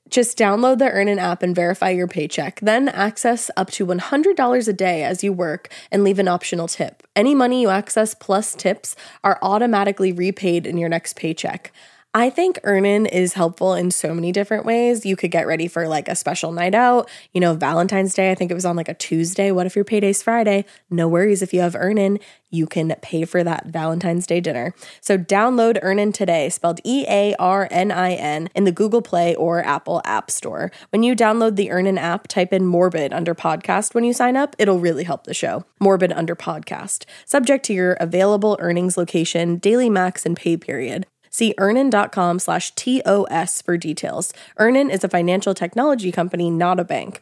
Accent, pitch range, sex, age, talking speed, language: American, 170-210 Hz, female, 20-39, 190 wpm, English